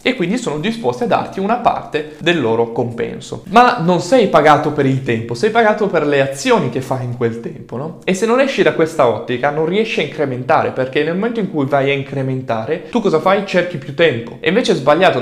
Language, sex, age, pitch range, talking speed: Italian, male, 20-39, 130-185 Hz, 230 wpm